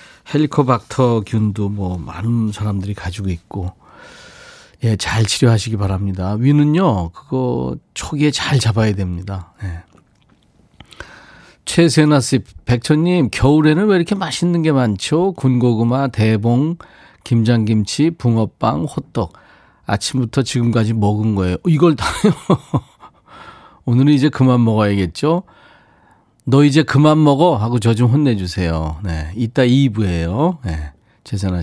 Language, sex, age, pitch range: Korean, male, 40-59, 100-140 Hz